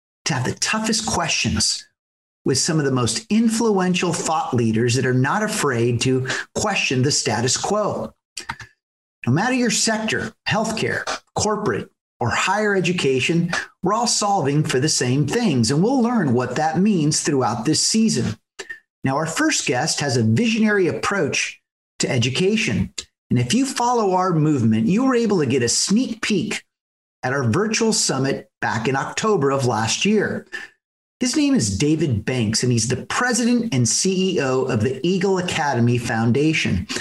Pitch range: 125-210 Hz